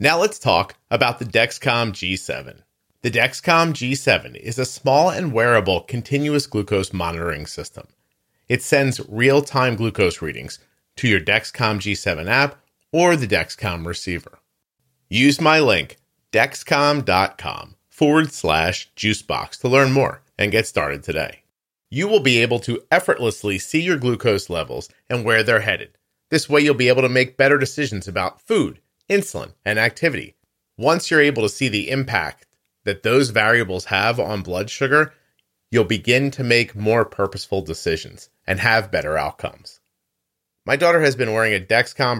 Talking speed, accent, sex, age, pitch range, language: 150 wpm, American, male, 40-59, 105-140 Hz, English